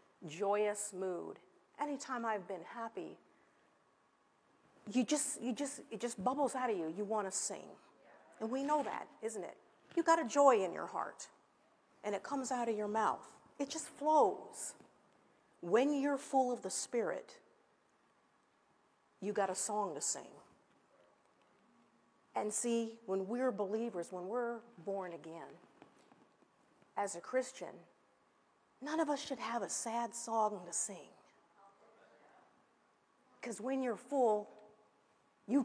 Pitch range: 210-275 Hz